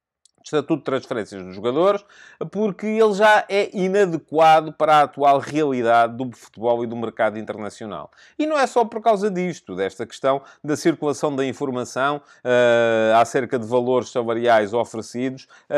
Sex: male